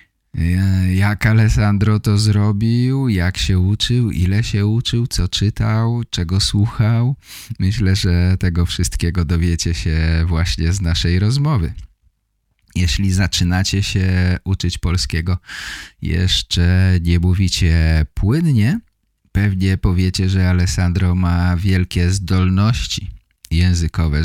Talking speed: 100 wpm